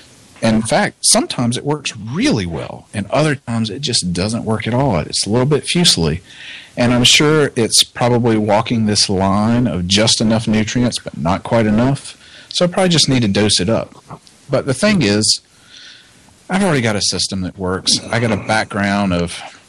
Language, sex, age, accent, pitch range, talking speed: English, male, 40-59, American, 95-130 Hz, 190 wpm